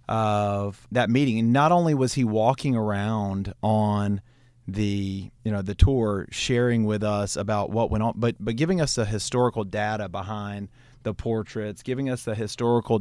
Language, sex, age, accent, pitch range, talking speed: English, male, 40-59, American, 100-115 Hz, 170 wpm